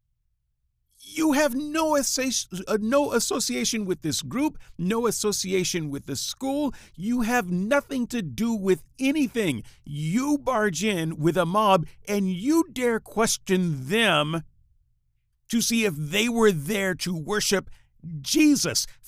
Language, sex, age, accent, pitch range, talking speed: English, male, 50-69, American, 150-235 Hz, 130 wpm